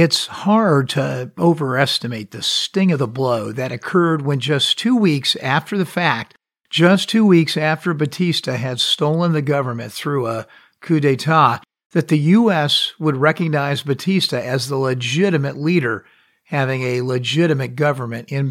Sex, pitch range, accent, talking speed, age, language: male, 130-165 Hz, American, 150 wpm, 50-69, English